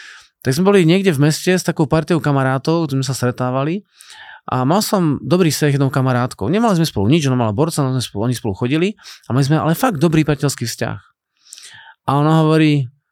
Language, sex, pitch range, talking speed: Slovak, male, 130-165 Hz, 200 wpm